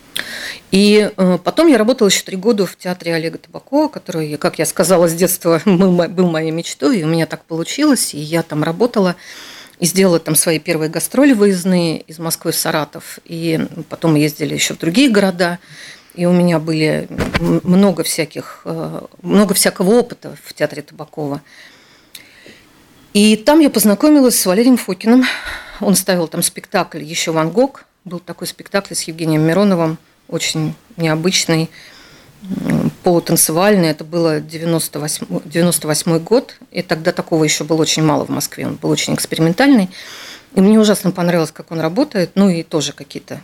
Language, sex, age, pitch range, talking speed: Russian, female, 40-59, 160-195 Hz, 155 wpm